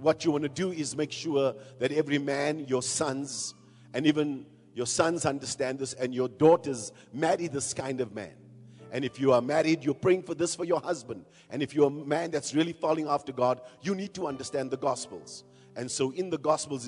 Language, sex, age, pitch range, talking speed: English, male, 50-69, 125-155 Hz, 215 wpm